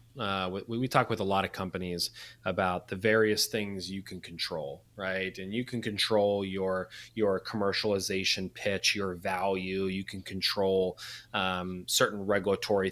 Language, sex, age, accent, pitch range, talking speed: English, male, 30-49, American, 95-115 Hz, 155 wpm